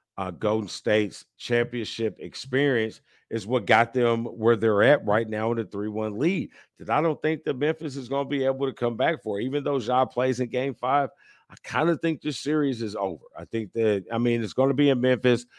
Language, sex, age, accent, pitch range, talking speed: English, male, 50-69, American, 100-125 Hz, 225 wpm